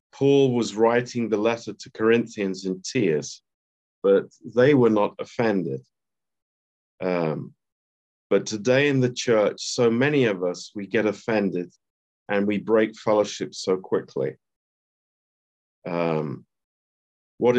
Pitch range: 80-115 Hz